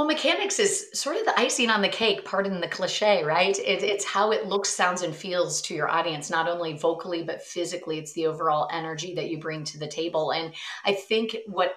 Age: 30-49